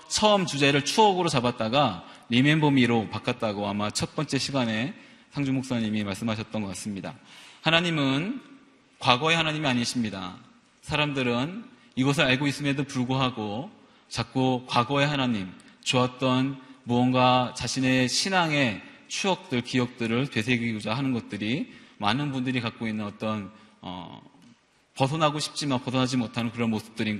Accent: native